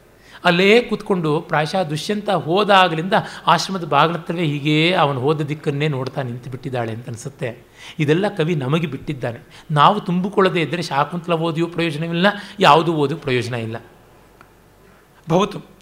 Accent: native